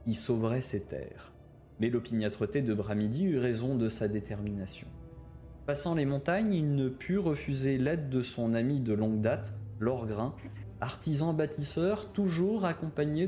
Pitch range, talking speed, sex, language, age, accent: 115-165 Hz, 140 wpm, male, French, 20-39, French